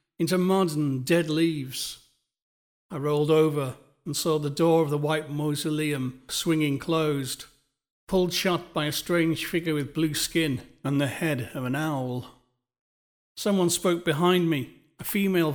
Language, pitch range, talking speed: English, 140-165 Hz, 150 wpm